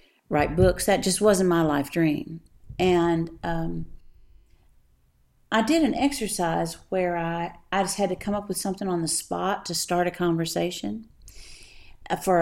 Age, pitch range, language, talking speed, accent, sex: 50-69, 145-185 Hz, English, 155 wpm, American, female